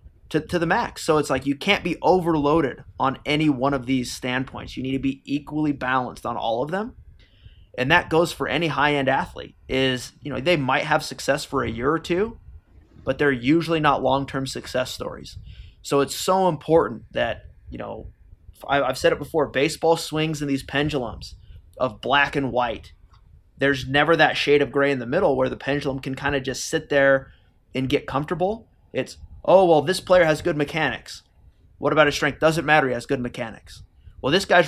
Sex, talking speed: male, 200 wpm